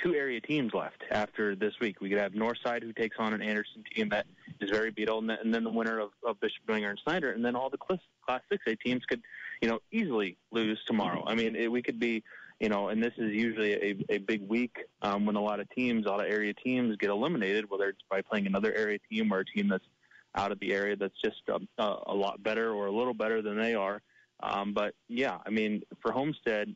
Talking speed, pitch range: 245 wpm, 105-115 Hz